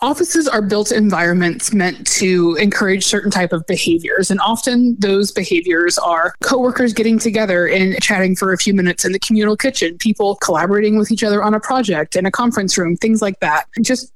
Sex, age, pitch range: female, 20-39, 185-230 Hz